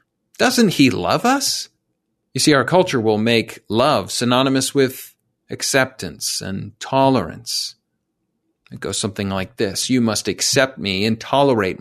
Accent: American